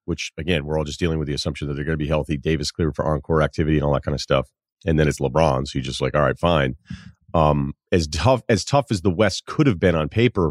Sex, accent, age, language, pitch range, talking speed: male, American, 40-59, English, 80-110 Hz, 285 wpm